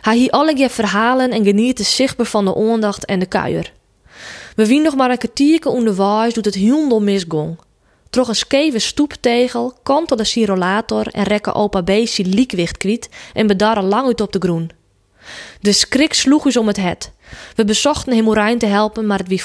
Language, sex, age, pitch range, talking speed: Dutch, female, 20-39, 190-235 Hz, 180 wpm